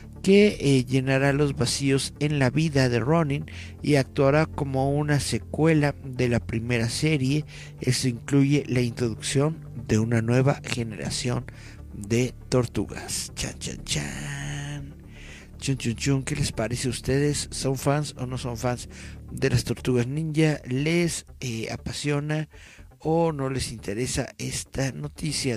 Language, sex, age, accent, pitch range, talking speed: Spanish, male, 50-69, Mexican, 110-140 Hz, 140 wpm